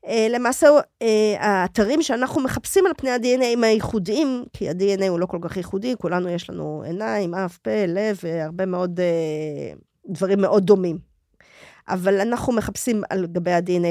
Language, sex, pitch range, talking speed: Hebrew, female, 175-245 Hz, 155 wpm